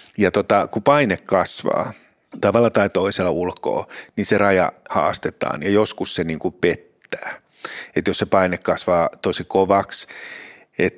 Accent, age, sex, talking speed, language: native, 60-79, male, 140 wpm, Finnish